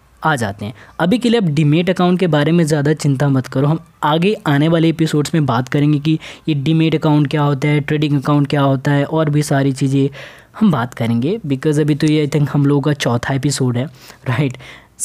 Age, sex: 20-39, female